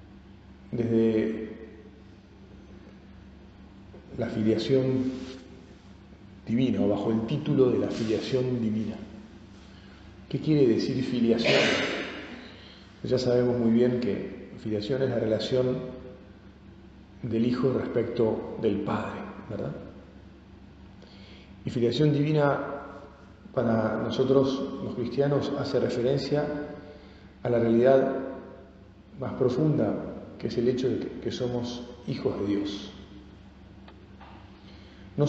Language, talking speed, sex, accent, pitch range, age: Spanish, 95 wpm, male, Argentinian, 100-130 Hz, 40-59